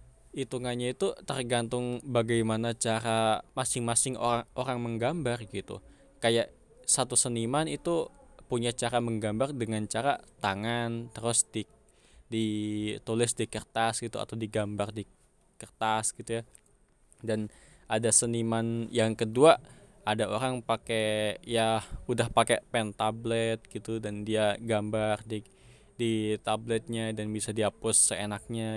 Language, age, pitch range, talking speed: Indonesian, 20-39, 110-120 Hz, 115 wpm